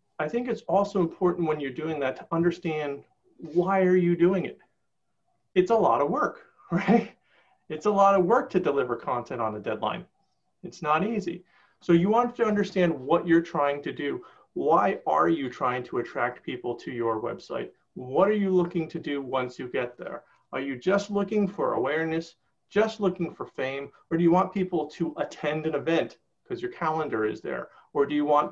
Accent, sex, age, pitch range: American, male, 40-59, 155-195 Hz